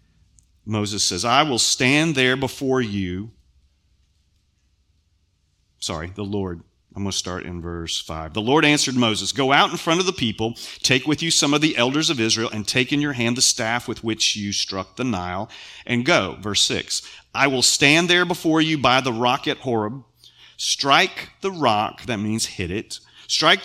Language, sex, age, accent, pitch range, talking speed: English, male, 40-59, American, 95-130 Hz, 190 wpm